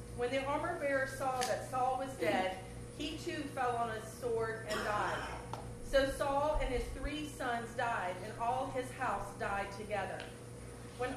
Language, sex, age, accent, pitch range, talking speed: English, female, 40-59, American, 245-285 Hz, 165 wpm